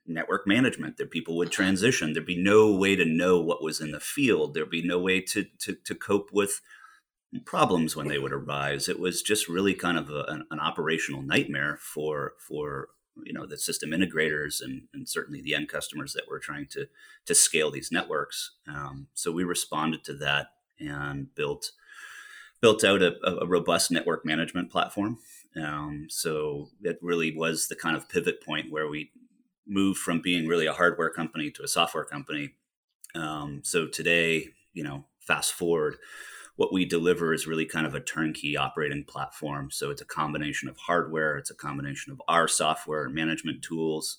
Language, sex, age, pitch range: English, male, 30-49, 75-100 Hz